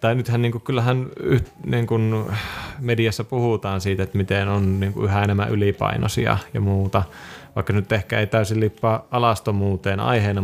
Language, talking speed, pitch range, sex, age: Finnish, 155 wpm, 95-115 Hz, male, 20-39